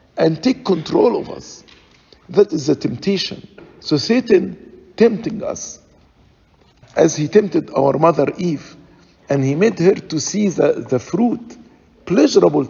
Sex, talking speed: male, 135 wpm